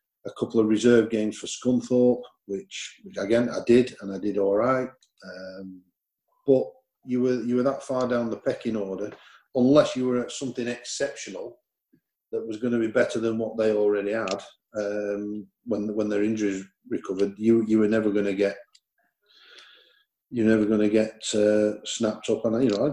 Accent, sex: British, male